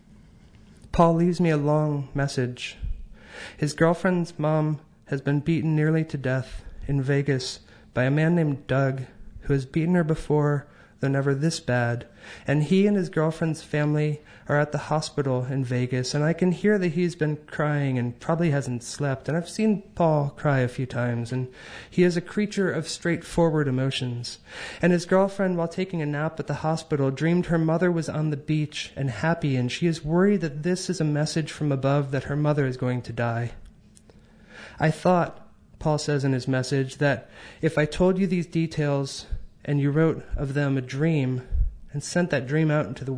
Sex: male